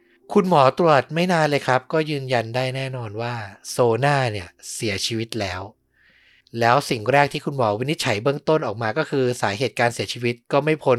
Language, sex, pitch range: Thai, male, 115-145 Hz